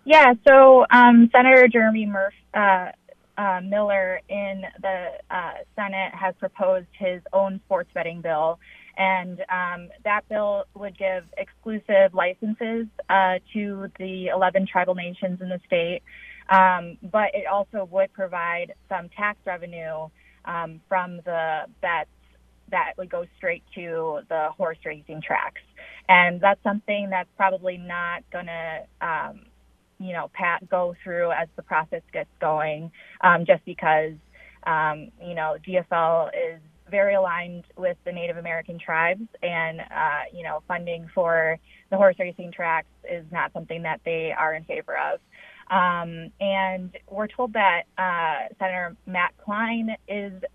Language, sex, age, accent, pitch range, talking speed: English, female, 20-39, American, 175-200 Hz, 145 wpm